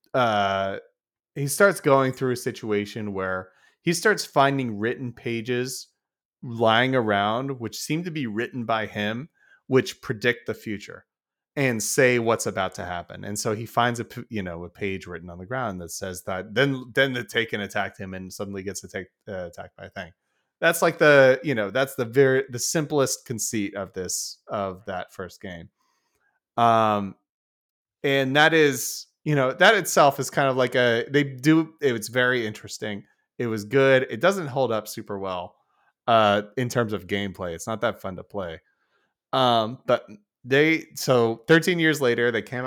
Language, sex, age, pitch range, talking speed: English, male, 30-49, 100-130 Hz, 180 wpm